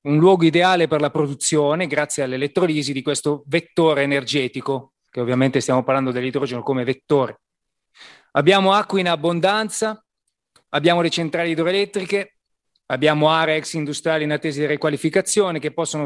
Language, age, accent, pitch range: Italian, 30-49, native, 145-180 Hz